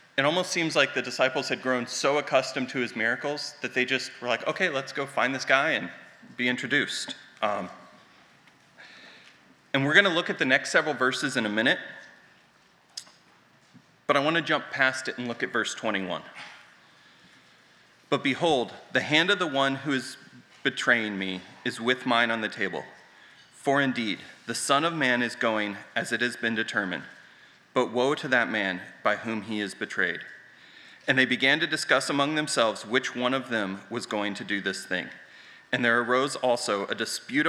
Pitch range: 105-135 Hz